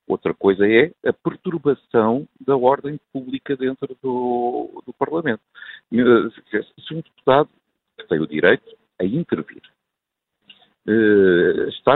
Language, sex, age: Portuguese, male, 50-69